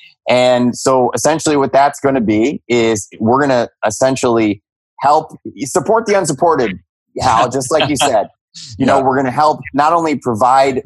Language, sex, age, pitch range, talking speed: English, male, 20-39, 95-130 Hz, 170 wpm